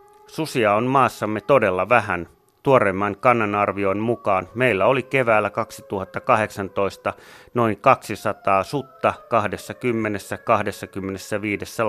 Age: 30-49